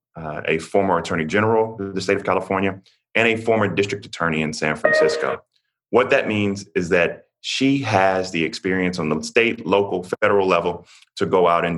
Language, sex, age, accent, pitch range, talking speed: English, male, 30-49, American, 85-100 Hz, 190 wpm